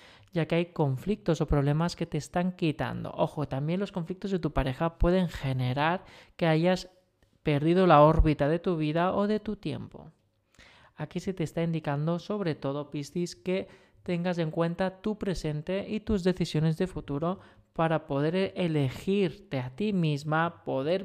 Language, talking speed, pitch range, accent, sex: Spanish, 160 wpm, 145-185 Hz, Spanish, male